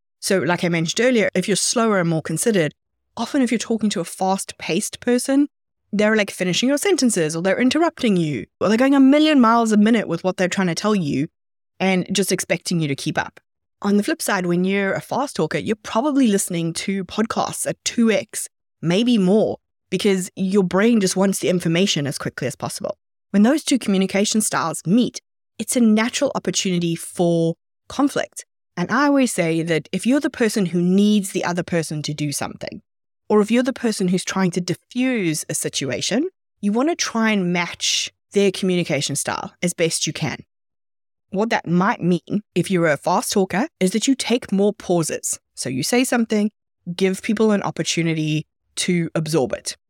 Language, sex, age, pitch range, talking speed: English, female, 20-39, 170-225 Hz, 190 wpm